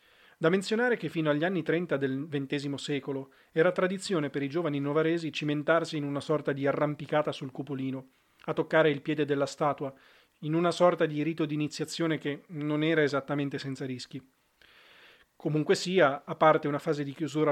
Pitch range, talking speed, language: 140-160 Hz, 175 wpm, Italian